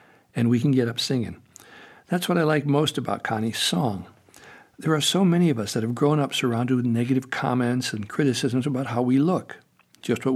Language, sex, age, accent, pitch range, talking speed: English, male, 60-79, American, 115-150 Hz, 210 wpm